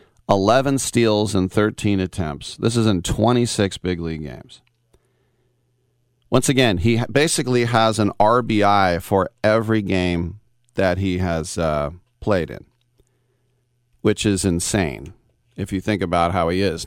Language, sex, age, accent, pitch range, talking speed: English, male, 40-59, American, 90-115 Hz, 135 wpm